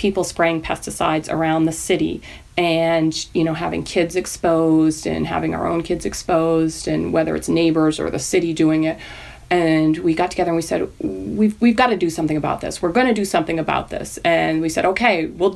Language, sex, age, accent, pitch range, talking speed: English, female, 30-49, American, 160-205 Hz, 210 wpm